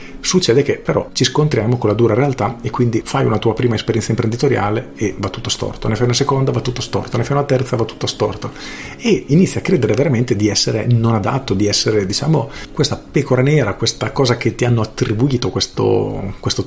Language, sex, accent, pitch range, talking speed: Italian, male, native, 105-125 Hz, 210 wpm